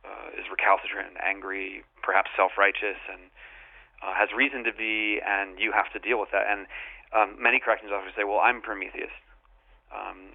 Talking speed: 175 wpm